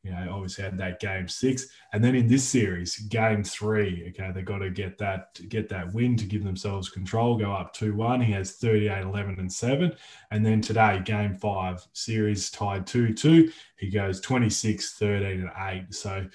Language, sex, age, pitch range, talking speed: English, male, 20-39, 95-115 Hz, 195 wpm